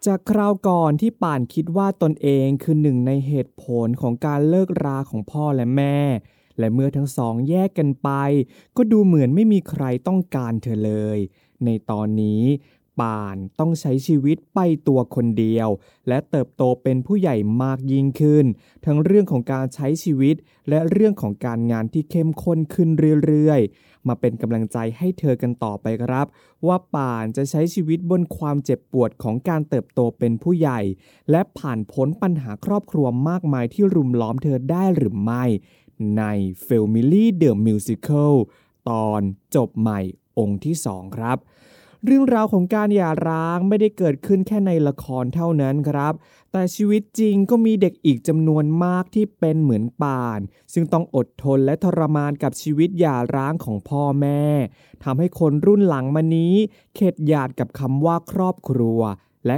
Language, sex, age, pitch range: Thai, male, 20-39, 120-170 Hz